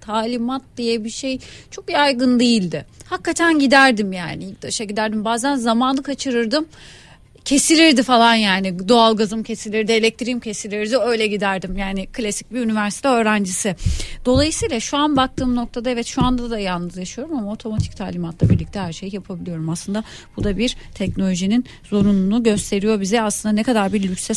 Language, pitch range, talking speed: Turkish, 190-245 Hz, 155 wpm